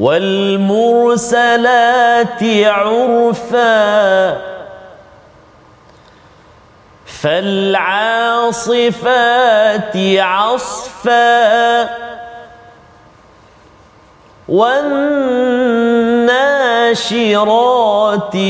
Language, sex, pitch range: Malayalam, male, 225-255 Hz